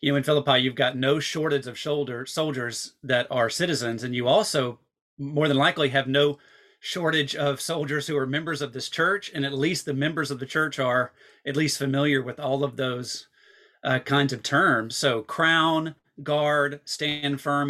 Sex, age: male, 40-59